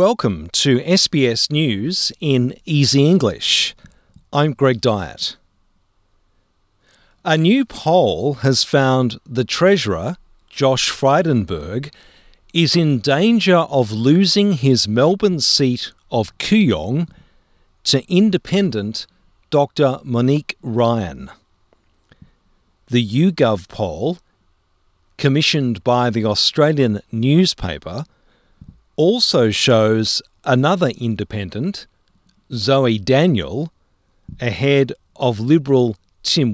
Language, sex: English, male